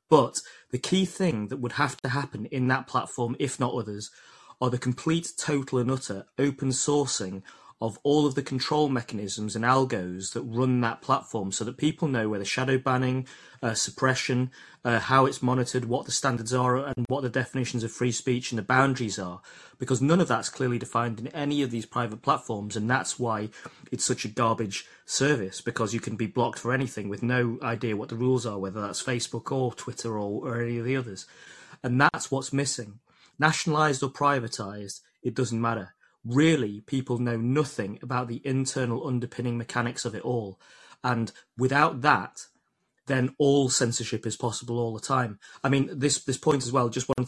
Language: English